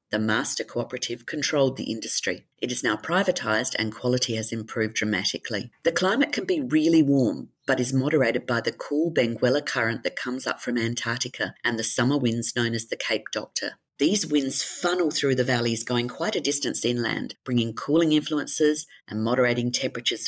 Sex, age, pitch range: female, 40-59, 115-135 Hz